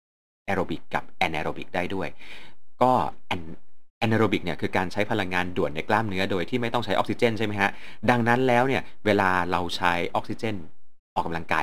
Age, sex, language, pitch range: 30-49, male, Thai, 85-115 Hz